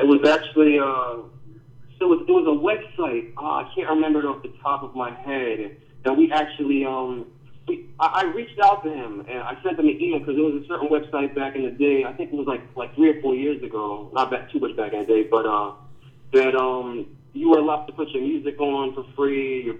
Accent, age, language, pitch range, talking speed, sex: American, 30-49, English, 125-150 Hz, 250 wpm, male